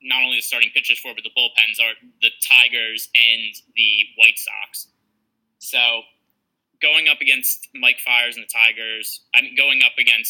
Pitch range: 120-135 Hz